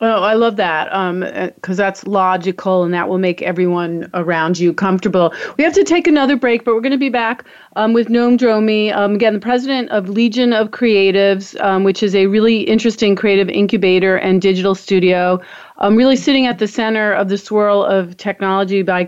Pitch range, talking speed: 185-220 Hz, 195 wpm